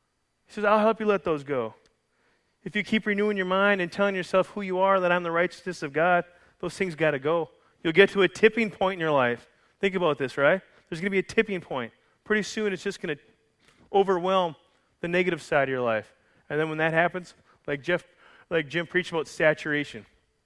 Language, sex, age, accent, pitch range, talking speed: English, male, 30-49, American, 145-190 Hz, 220 wpm